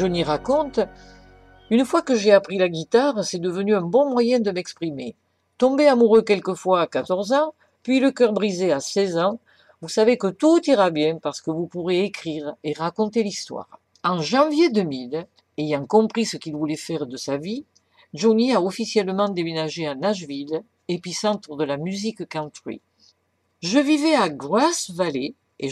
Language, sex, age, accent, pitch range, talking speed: French, female, 50-69, French, 155-220 Hz, 175 wpm